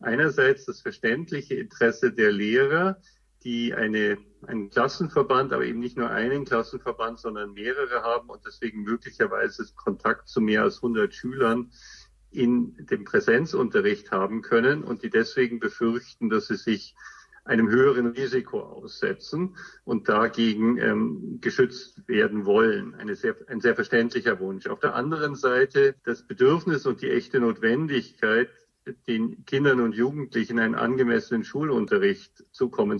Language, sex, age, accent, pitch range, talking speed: German, male, 50-69, German, 115-140 Hz, 135 wpm